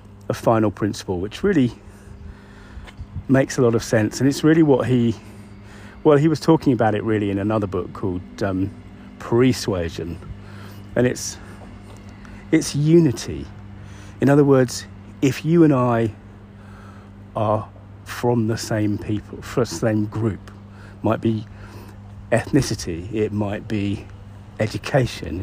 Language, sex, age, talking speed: English, male, 40-59, 130 wpm